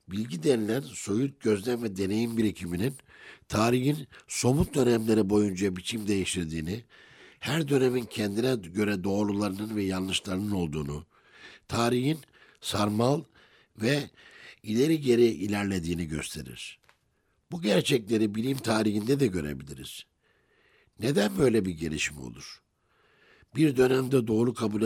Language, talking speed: Turkish, 105 wpm